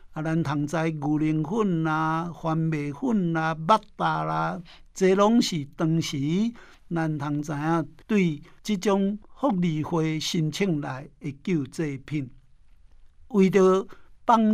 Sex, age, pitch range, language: male, 60-79, 150-190 Hz, Chinese